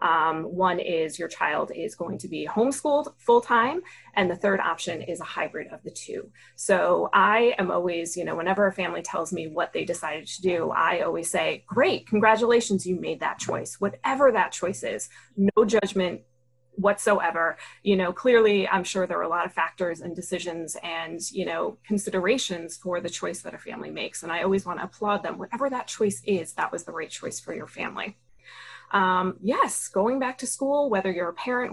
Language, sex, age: English, female, 20-39